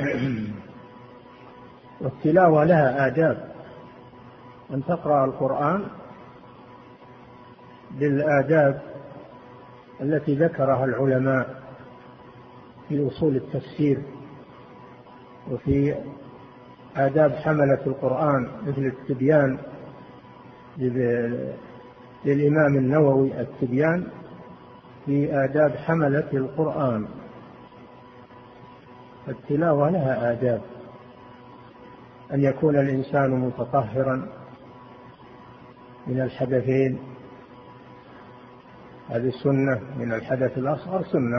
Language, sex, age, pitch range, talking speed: Arabic, male, 50-69, 125-145 Hz, 60 wpm